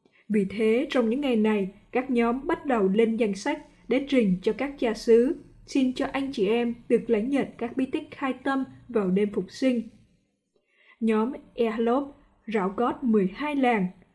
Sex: female